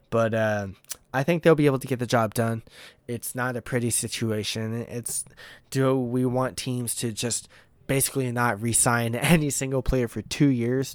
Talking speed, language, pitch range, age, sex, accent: 180 wpm, English, 105-125 Hz, 20-39, male, American